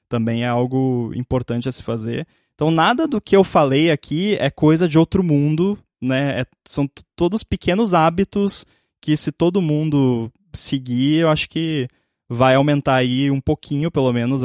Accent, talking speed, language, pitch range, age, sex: Brazilian, 170 wpm, Portuguese, 130-170 Hz, 20-39, male